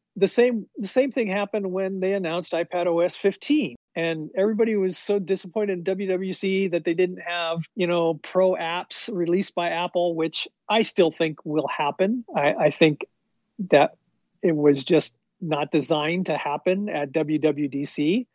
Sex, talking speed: male, 155 wpm